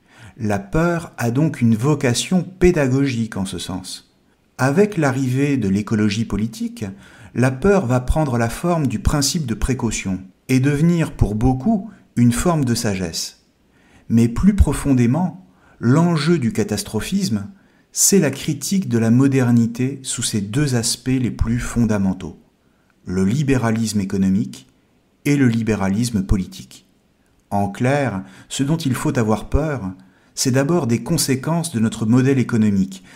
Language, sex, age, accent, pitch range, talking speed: French, male, 50-69, French, 105-140 Hz, 135 wpm